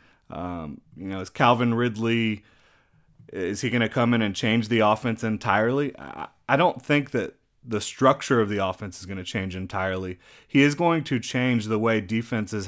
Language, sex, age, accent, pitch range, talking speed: English, male, 30-49, American, 95-115 Hz, 190 wpm